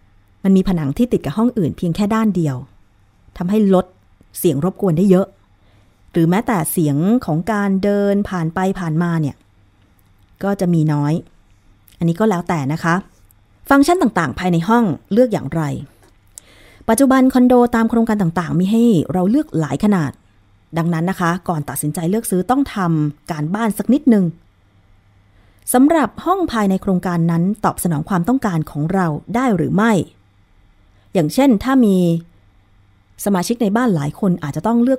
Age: 20-39